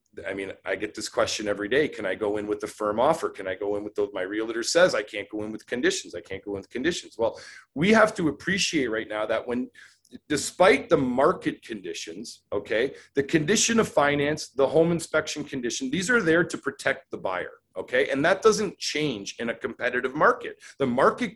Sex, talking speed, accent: male, 215 wpm, American